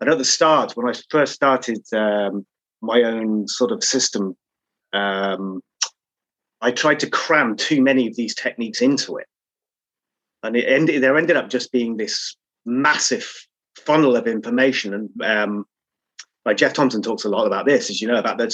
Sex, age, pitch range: male, 30-49, 110-140 Hz